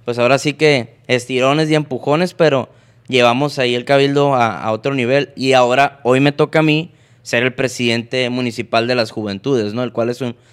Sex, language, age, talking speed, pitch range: male, Spanish, 20-39, 200 wpm, 120-145 Hz